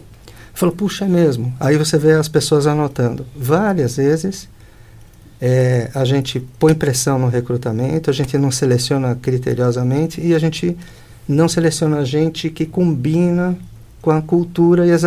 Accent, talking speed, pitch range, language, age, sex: Brazilian, 145 wpm, 125-160 Hz, Portuguese, 50-69, male